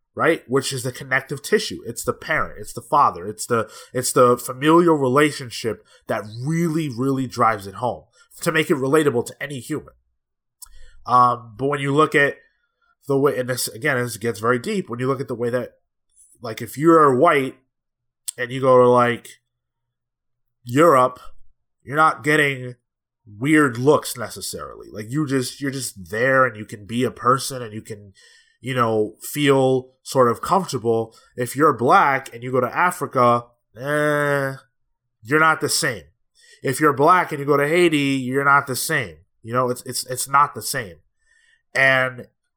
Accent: American